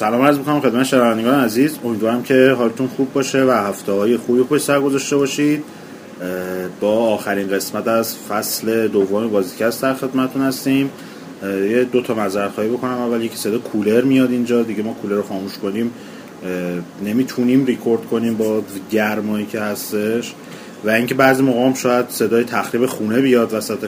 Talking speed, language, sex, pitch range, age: 165 wpm, Persian, male, 100-130 Hz, 30-49